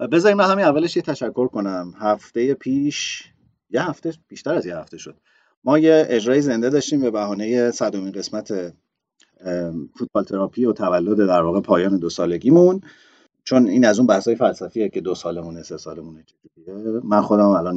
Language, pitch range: Persian, 95-130 Hz